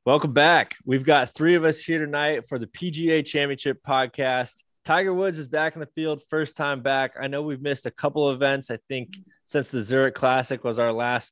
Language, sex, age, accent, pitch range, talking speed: English, male, 20-39, American, 120-140 Hz, 215 wpm